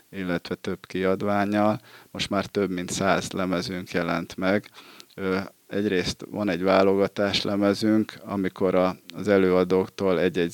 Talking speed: 115 wpm